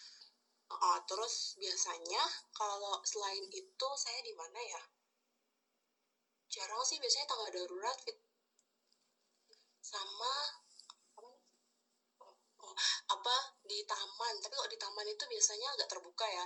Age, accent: 20-39, native